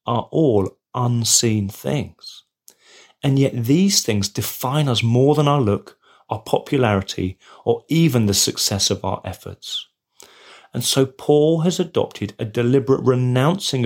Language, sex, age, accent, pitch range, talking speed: English, male, 30-49, British, 100-140 Hz, 135 wpm